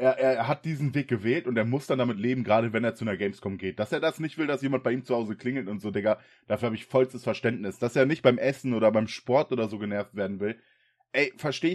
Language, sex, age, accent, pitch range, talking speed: German, male, 20-39, German, 110-130 Hz, 275 wpm